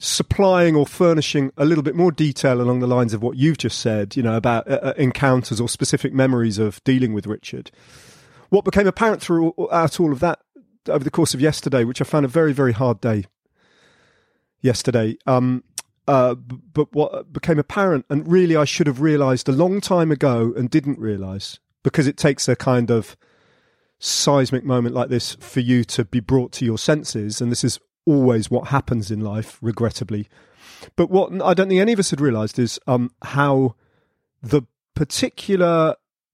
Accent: British